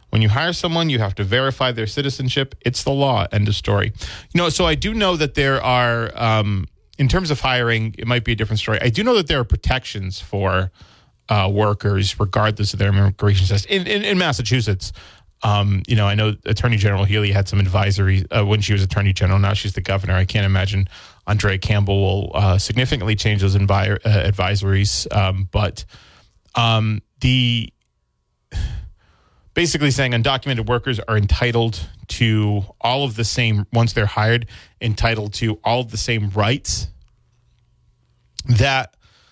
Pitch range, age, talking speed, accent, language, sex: 100-125 Hz, 30-49, 175 wpm, American, English, male